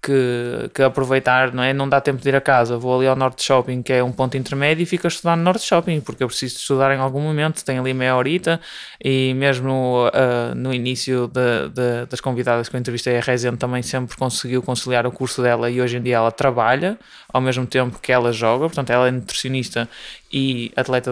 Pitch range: 125-140 Hz